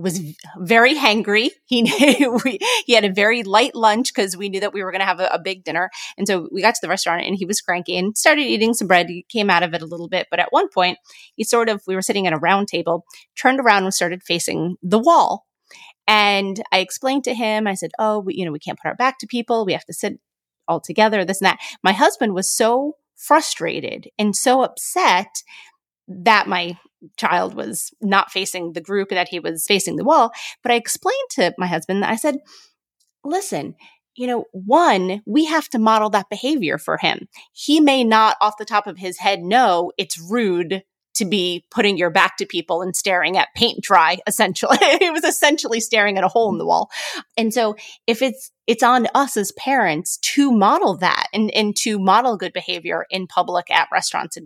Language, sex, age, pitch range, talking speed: English, female, 30-49, 185-235 Hz, 215 wpm